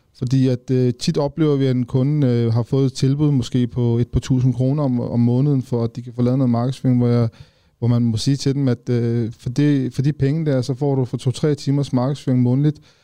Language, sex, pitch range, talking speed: Danish, male, 120-135 Hz, 255 wpm